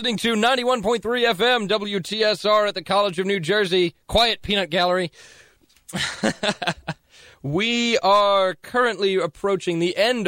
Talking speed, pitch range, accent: 130 wpm, 135-185 Hz, American